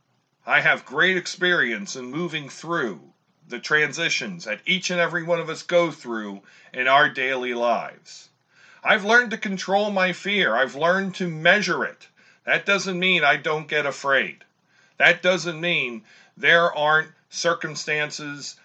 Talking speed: 150 wpm